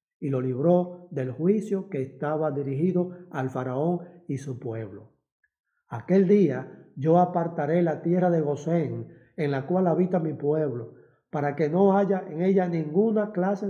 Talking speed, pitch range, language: 155 wpm, 140-185 Hz, Spanish